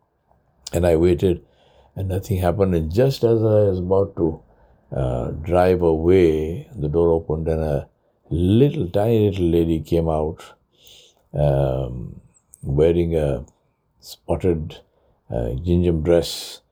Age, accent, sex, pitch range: 60-79, Indian, male, 80-95 Hz